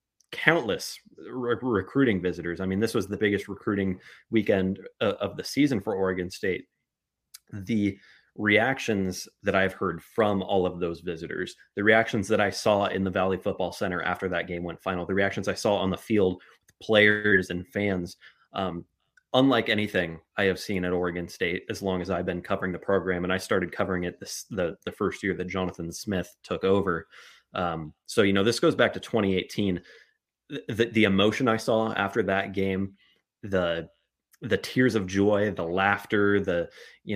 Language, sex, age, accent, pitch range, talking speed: English, male, 30-49, American, 90-110 Hz, 180 wpm